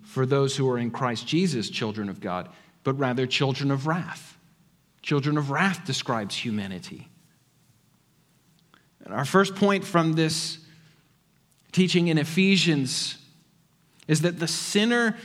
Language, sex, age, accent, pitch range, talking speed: English, male, 40-59, American, 145-195 Hz, 130 wpm